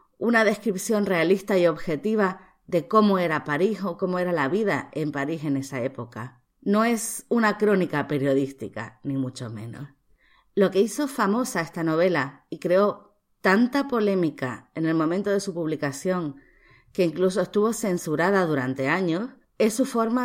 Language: Spanish